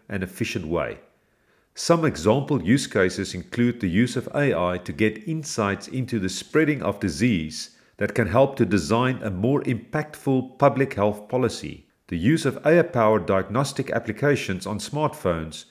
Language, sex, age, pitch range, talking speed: English, male, 40-59, 100-135 Hz, 150 wpm